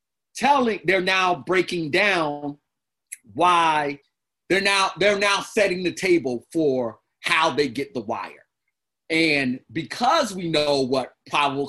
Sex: male